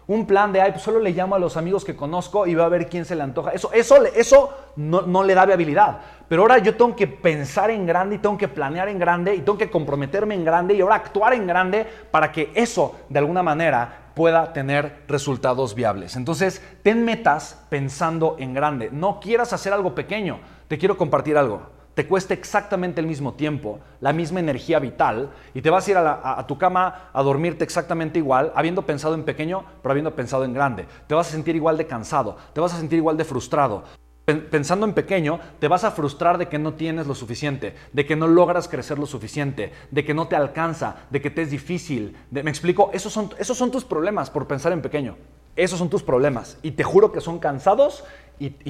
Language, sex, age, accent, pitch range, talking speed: Spanish, male, 30-49, Mexican, 145-190 Hz, 225 wpm